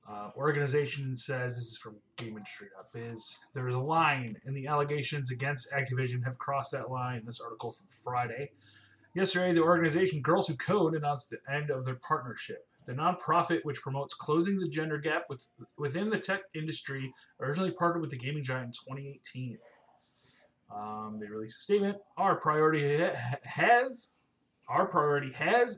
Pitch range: 125-165 Hz